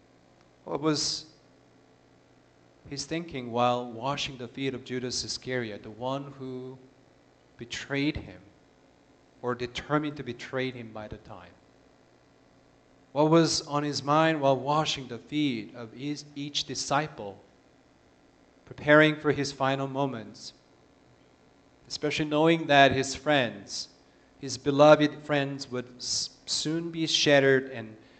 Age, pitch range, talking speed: 30-49, 115-145 Hz, 120 wpm